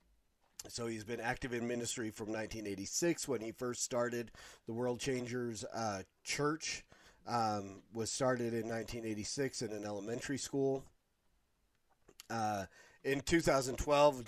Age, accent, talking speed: 40-59, American, 120 wpm